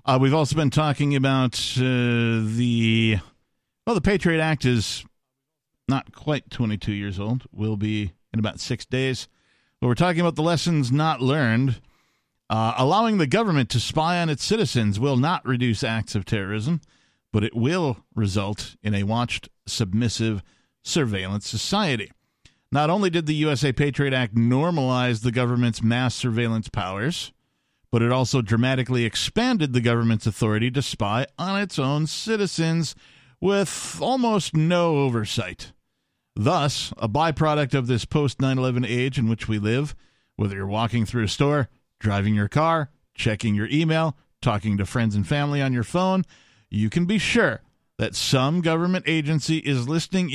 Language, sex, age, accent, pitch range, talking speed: English, male, 50-69, American, 115-155 Hz, 155 wpm